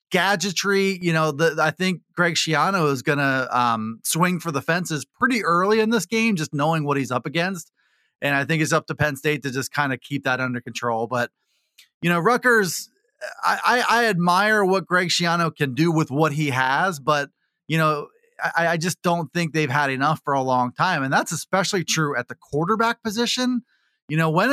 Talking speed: 210 wpm